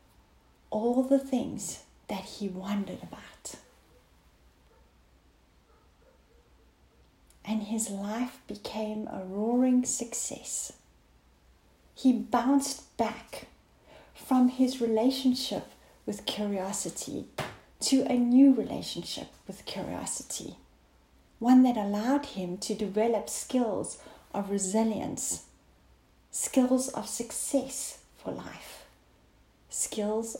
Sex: female